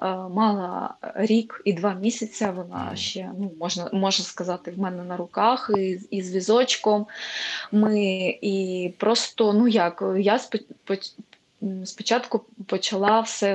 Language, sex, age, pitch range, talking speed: Ukrainian, female, 20-39, 185-215 Hz, 115 wpm